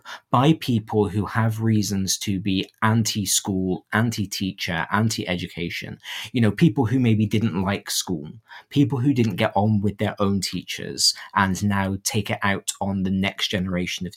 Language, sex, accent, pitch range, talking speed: English, male, British, 95-115 Hz, 155 wpm